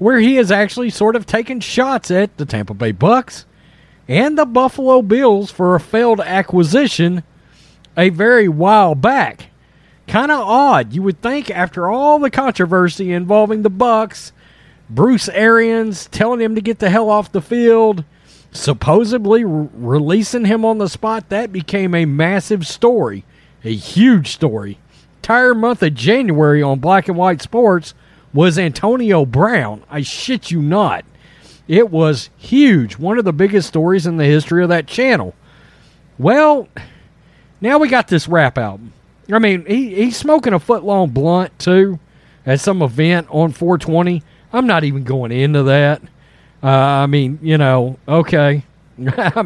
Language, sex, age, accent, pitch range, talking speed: English, male, 40-59, American, 150-220 Hz, 155 wpm